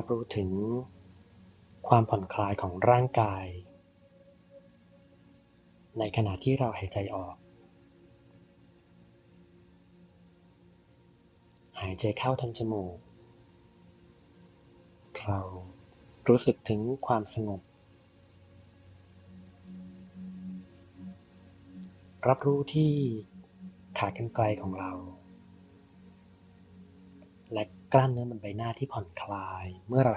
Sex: male